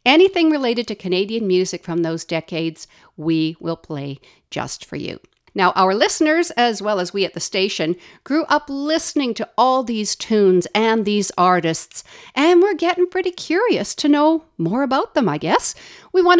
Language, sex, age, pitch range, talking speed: English, female, 60-79, 175-280 Hz, 175 wpm